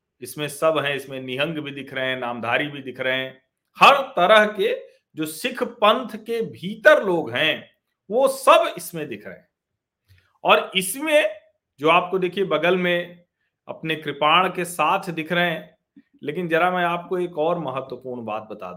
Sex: male